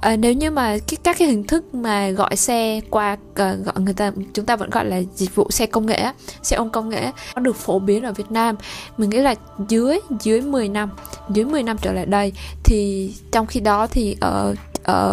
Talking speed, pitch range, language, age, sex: 230 wpm, 205-250 Hz, Vietnamese, 20-39, female